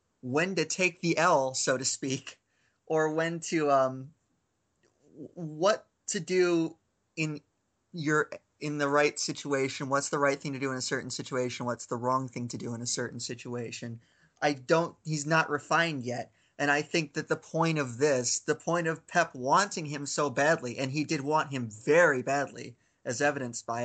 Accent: American